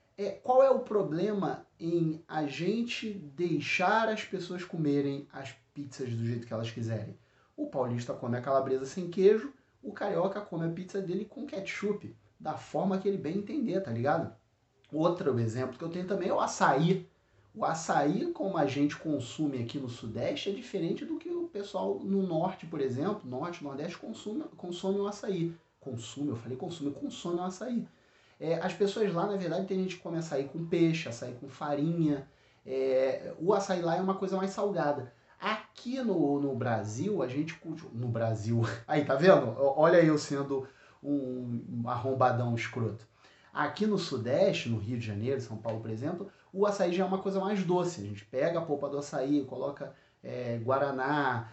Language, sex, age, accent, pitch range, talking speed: Portuguese, male, 30-49, Brazilian, 130-190 Hz, 175 wpm